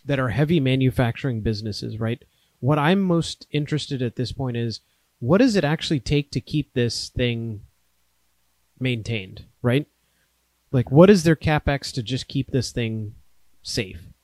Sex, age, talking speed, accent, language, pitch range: male, 30-49, 150 wpm, American, English, 110-150 Hz